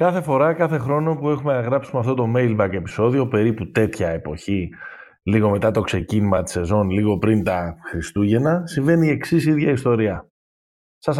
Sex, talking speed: male, 170 wpm